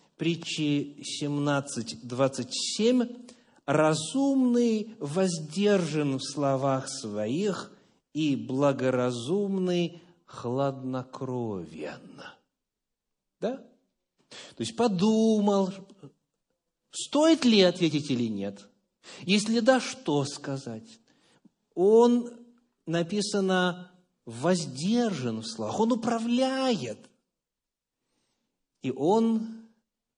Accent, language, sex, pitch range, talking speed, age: native, Russian, male, 140-230 Hz, 60 wpm, 50-69